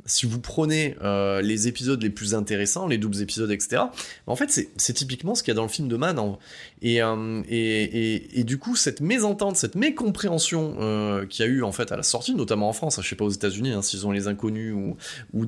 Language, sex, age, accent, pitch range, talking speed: French, male, 20-39, French, 110-175 Hz, 265 wpm